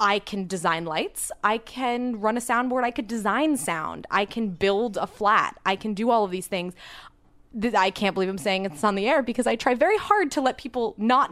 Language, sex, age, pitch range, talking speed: English, female, 20-39, 200-260 Hz, 230 wpm